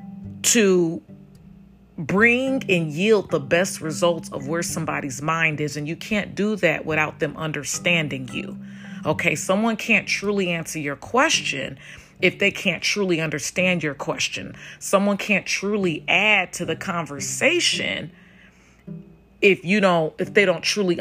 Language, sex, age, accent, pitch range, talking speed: English, female, 40-59, American, 155-190 Hz, 140 wpm